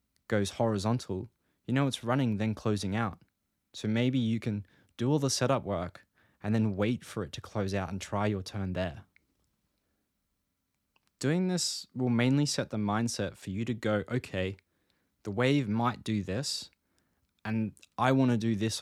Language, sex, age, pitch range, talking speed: English, male, 20-39, 95-120 Hz, 170 wpm